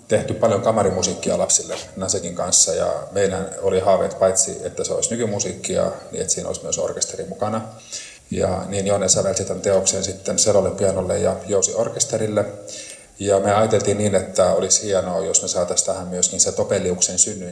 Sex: male